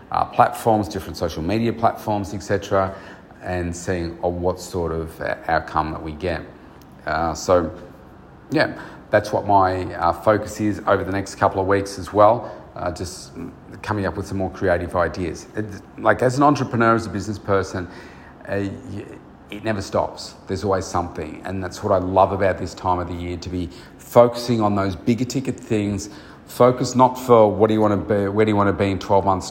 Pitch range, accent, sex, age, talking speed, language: 90-100 Hz, Australian, male, 40-59, 195 wpm, English